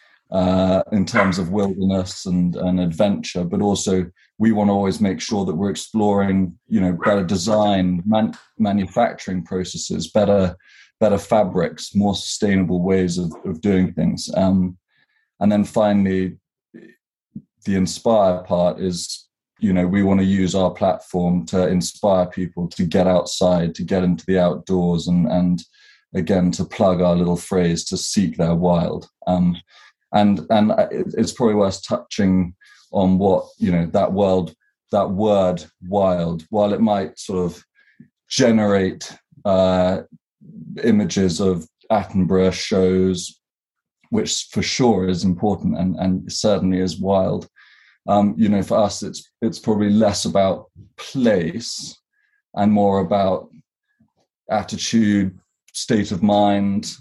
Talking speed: 135 wpm